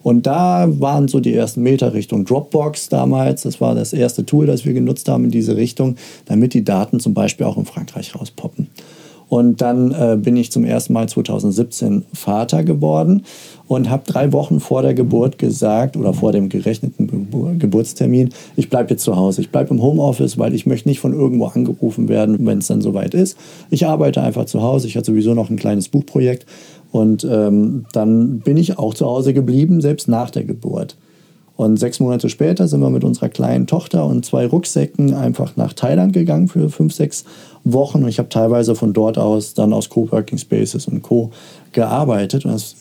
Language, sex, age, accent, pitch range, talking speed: German, male, 40-59, German, 110-160 Hz, 195 wpm